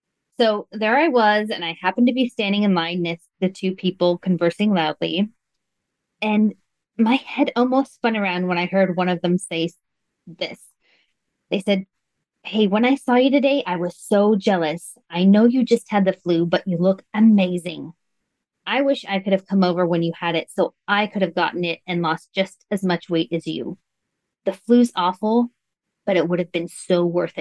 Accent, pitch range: American, 180-220 Hz